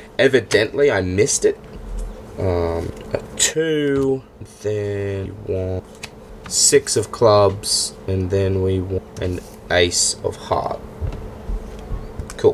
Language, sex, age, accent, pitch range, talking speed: English, male, 20-39, Australian, 95-130 Hz, 100 wpm